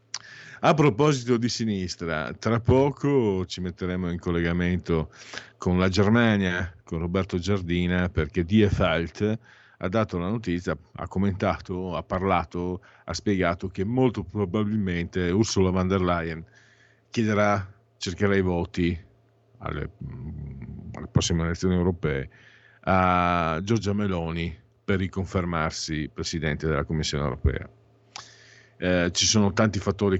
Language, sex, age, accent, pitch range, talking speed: Italian, male, 50-69, native, 85-110 Hz, 115 wpm